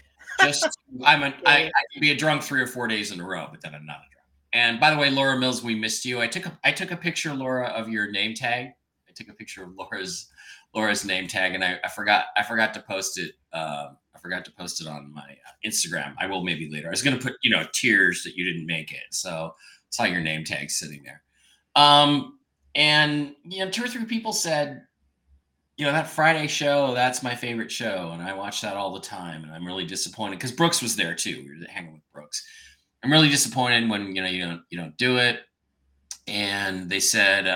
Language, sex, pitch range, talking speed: English, male, 85-135 Hz, 230 wpm